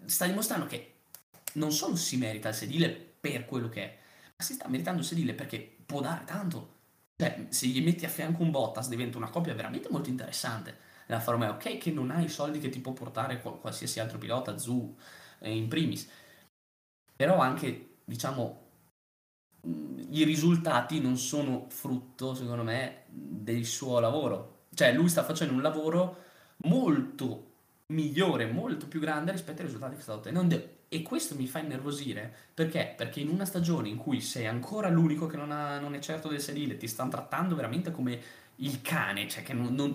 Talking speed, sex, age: 180 wpm, male, 20-39